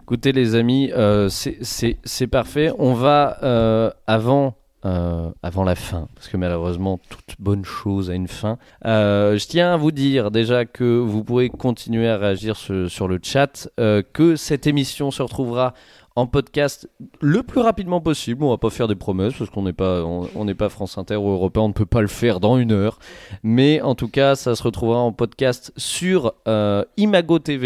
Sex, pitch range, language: male, 100-135 Hz, French